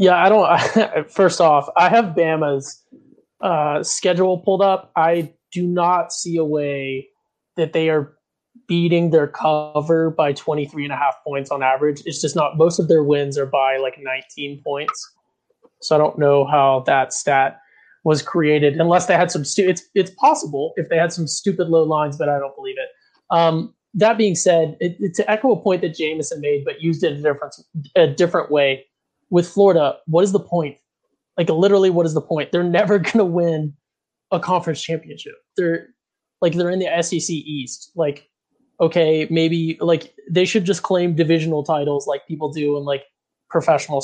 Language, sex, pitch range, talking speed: English, male, 150-185 Hz, 190 wpm